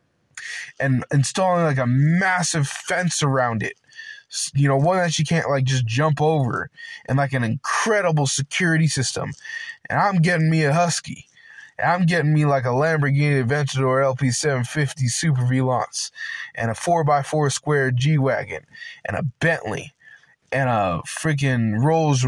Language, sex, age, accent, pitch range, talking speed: English, male, 20-39, American, 130-170 Hz, 150 wpm